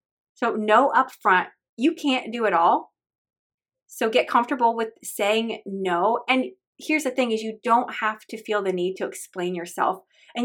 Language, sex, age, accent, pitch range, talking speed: English, female, 20-39, American, 195-255 Hz, 170 wpm